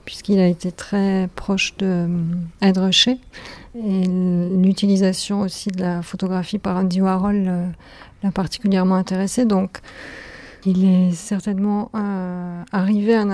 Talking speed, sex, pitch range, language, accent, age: 120 wpm, female, 185-205 Hz, French, French, 50-69